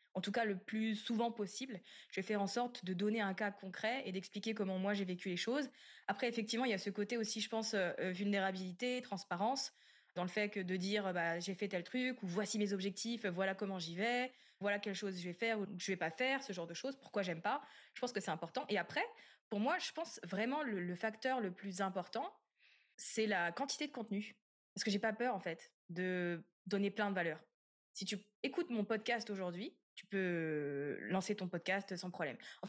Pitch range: 190-225 Hz